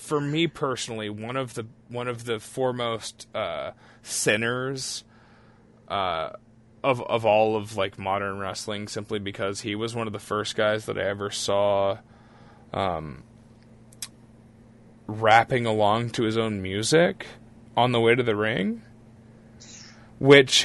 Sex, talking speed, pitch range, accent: male, 135 wpm, 105-130 Hz, American